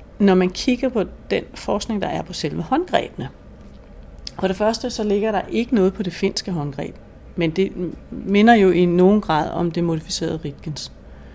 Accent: native